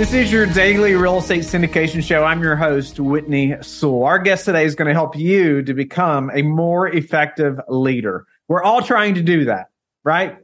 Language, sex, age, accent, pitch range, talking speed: English, male, 30-49, American, 140-180 Hz, 195 wpm